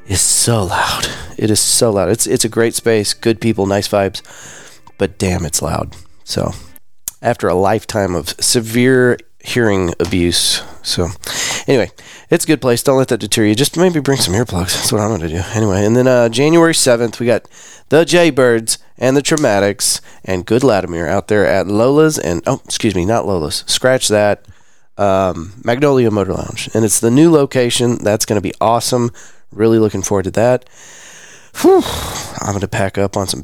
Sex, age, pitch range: male, 30-49, 95-130 Hz